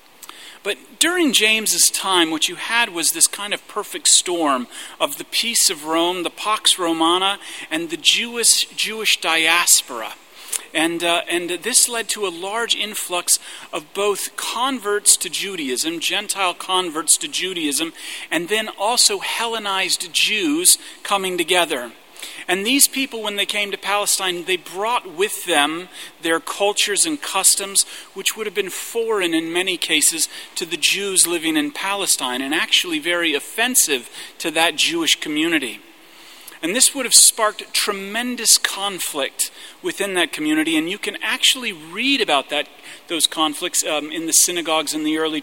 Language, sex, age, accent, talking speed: English, male, 40-59, American, 150 wpm